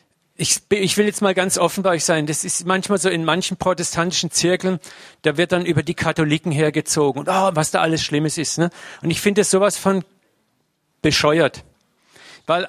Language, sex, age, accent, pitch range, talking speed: German, male, 50-69, German, 150-185 Hz, 195 wpm